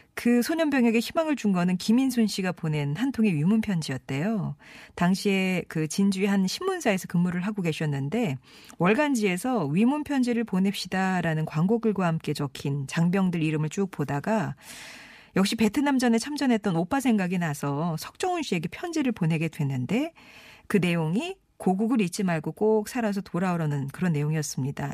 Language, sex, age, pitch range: Korean, female, 40-59, 155-225 Hz